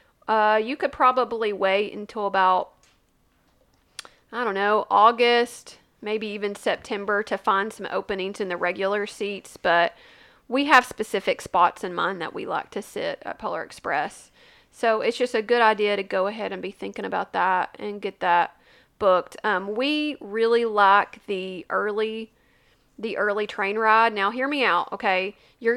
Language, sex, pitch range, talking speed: English, female, 205-260 Hz, 165 wpm